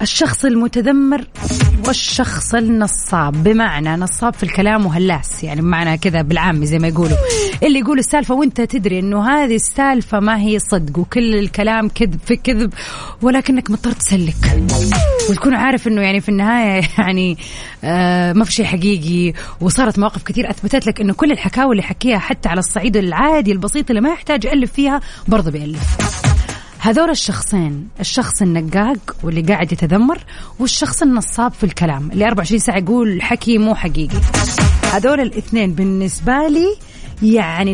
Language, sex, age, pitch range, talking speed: Arabic, female, 30-49, 185-245 Hz, 145 wpm